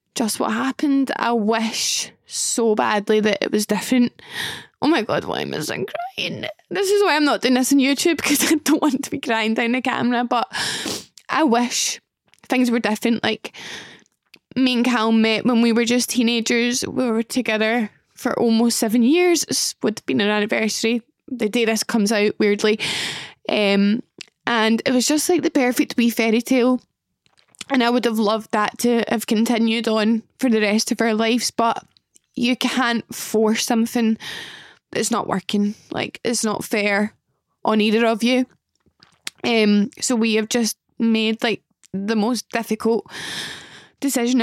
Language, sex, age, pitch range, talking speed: English, female, 10-29, 215-245 Hz, 170 wpm